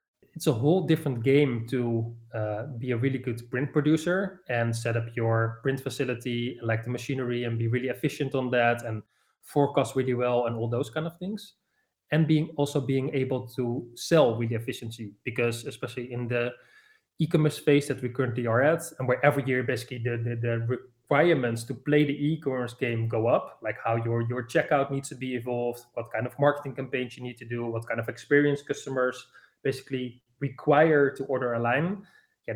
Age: 20-39